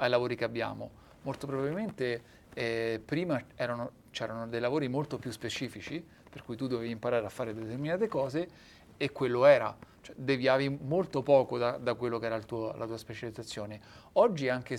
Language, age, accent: Italian, 40-59, native